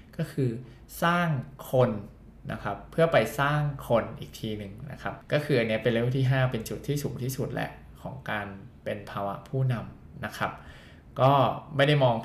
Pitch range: 110-135 Hz